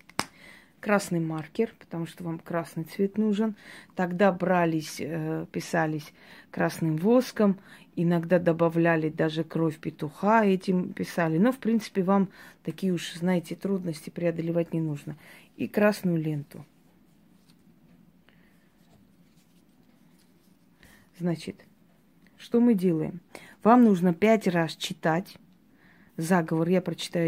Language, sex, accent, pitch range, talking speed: Russian, female, native, 165-205 Hz, 100 wpm